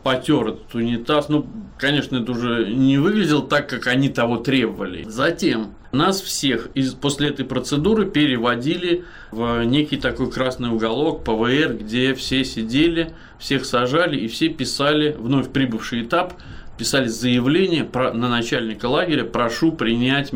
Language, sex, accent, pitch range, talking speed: Russian, male, native, 115-150 Hz, 140 wpm